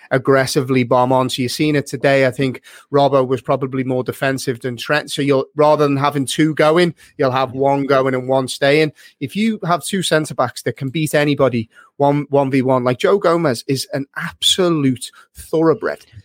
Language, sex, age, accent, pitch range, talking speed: English, male, 30-49, British, 130-155 Hz, 190 wpm